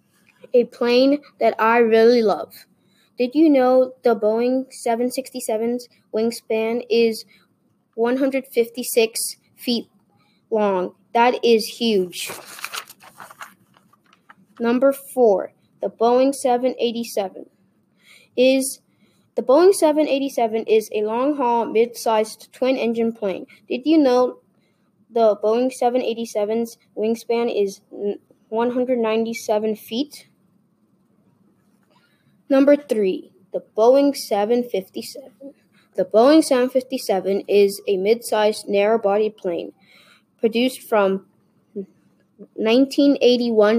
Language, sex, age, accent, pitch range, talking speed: English, female, 20-39, American, 215-260 Hz, 90 wpm